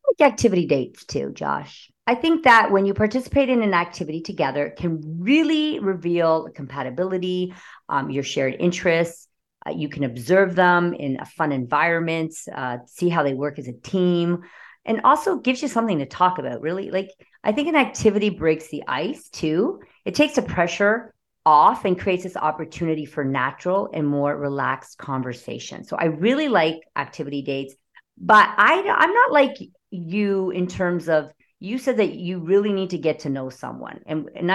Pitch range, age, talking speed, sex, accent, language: 150-210 Hz, 40-59, 180 wpm, female, American, English